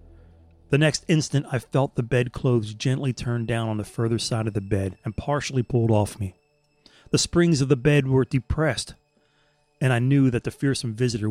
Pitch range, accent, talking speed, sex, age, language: 110-135 Hz, American, 190 wpm, male, 30-49, English